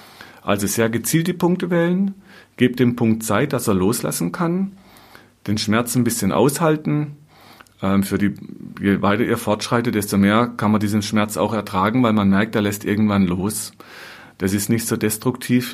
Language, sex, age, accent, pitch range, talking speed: German, male, 40-59, German, 100-120 Hz, 165 wpm